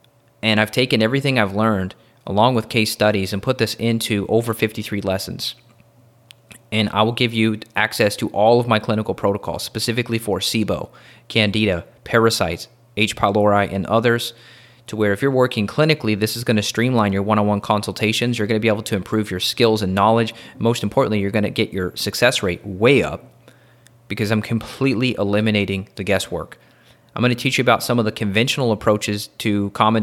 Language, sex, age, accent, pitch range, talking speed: English, male, 30-49, American, 105-120 Hz, 185 wpm